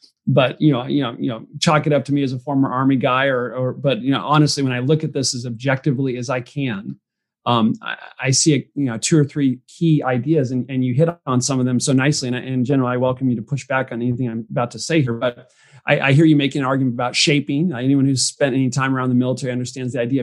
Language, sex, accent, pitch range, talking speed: English, male, American, 125-140 Hz, 275 wpm